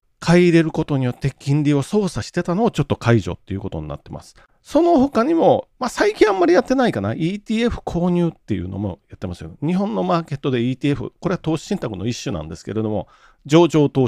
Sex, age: male, 40-59